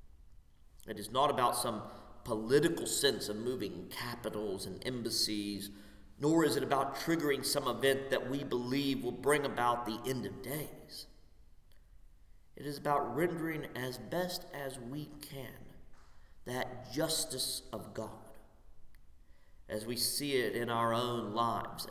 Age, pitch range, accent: 40-59, 100-135 Hz, American